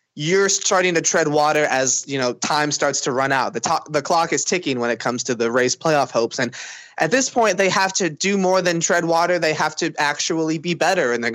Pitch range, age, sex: 135-175 Hz, 20-39, male